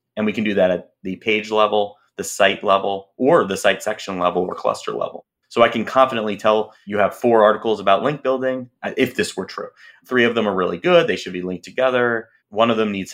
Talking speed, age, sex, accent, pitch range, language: 235 wpm, 30-49, male, American, 100-120 Hz, English